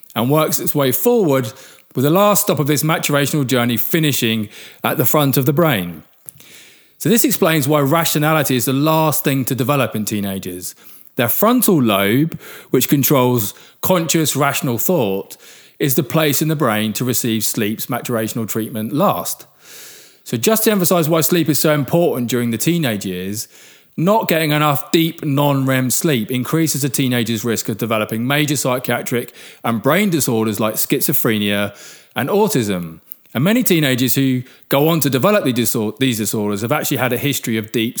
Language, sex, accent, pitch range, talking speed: English, male, British, 120-165 Hz, 165 wpm